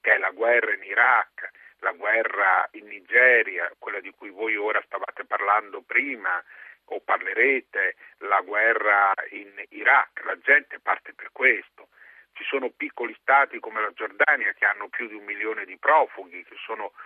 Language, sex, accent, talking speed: Italian, male, native, 160 wpm